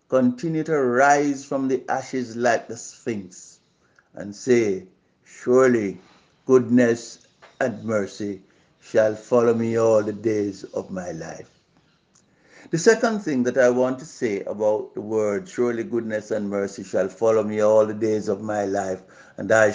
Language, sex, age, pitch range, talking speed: English, male, 60-79, 110-145 Hz, 150 wpm